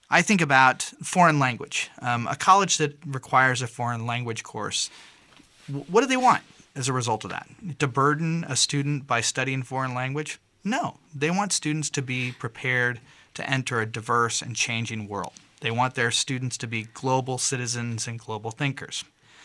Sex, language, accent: male, English, American